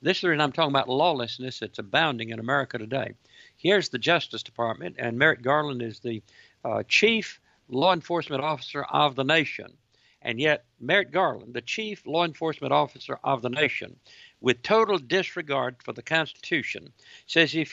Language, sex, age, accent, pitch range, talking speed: English, male, 60-79, American, 130-175 Hz, 165 wpm